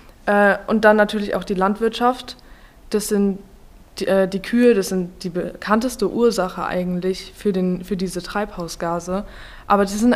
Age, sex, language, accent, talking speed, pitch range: 20-39, female, German, German, 150 wpm, 190-220 Hz